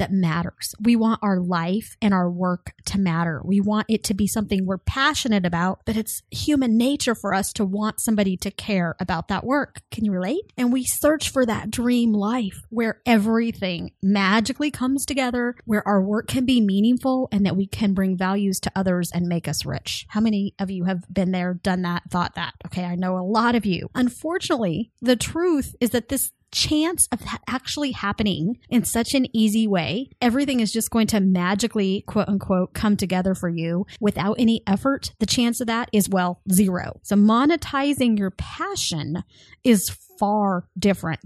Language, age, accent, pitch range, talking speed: English, 30-49, American, 185-240 Hz, 190 wpm